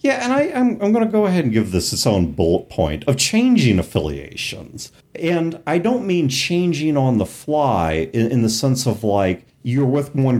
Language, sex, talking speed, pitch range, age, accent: English, male, 210 wpm, 100-140 Hz, 40-59, American